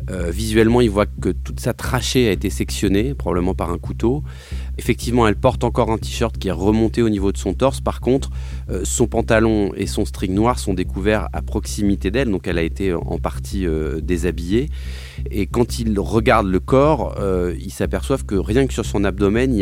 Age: 30-49